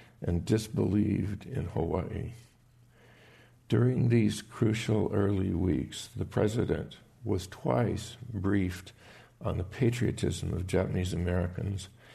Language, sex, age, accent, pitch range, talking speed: English, male, 50-69, American, 95-120 Hz, 100 wpm